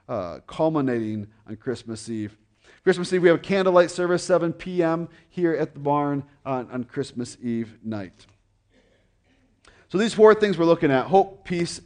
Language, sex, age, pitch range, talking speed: English, male, 40-59, 125-170 Hz, 160 wpm